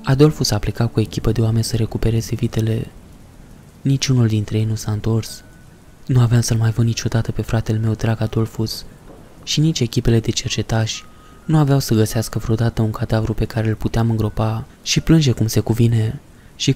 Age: 20-39